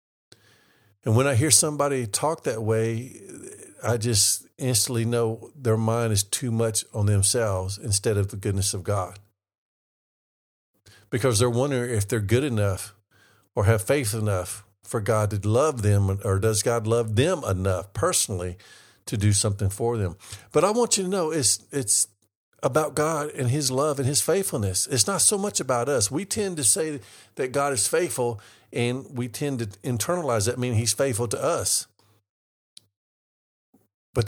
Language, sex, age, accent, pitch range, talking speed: English, male, 50-69, American, 105-145 Hz, 165 wpm